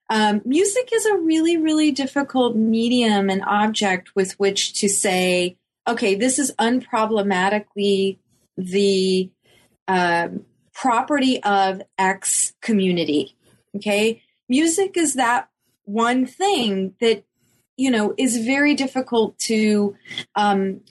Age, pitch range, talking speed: 30-49, 195-250 Hz, 105 wpm